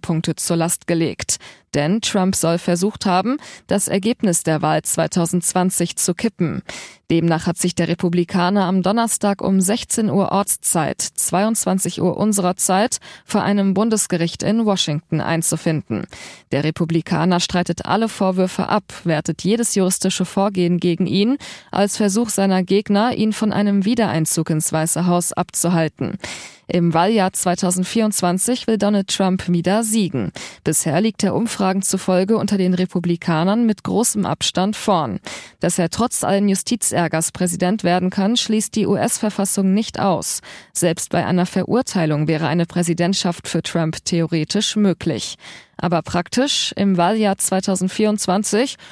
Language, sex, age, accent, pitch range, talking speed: German, female, 20-39, German, 170-205 Hz, 135 wpm